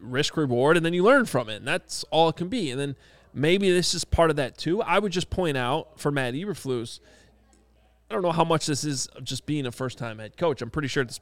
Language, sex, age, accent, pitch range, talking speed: English, male, 20-39, American, 125-160 Hz, 265 wpm